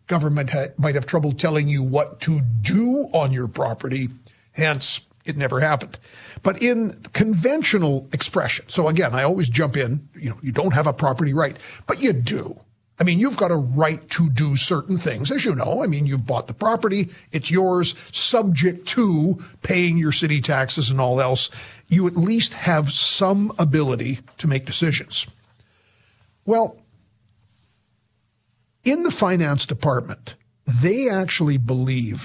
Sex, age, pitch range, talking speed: male, 50-69, 125-170 Hz, 155 wpm